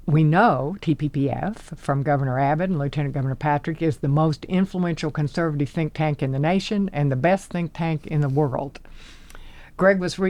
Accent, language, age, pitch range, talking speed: American, English, 60-79, 140-165 Hz, 175 wpm